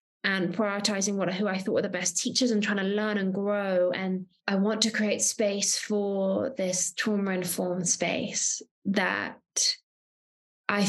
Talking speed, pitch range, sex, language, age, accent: 155 wpm, 185-220 Hz, female, English, 20-39, British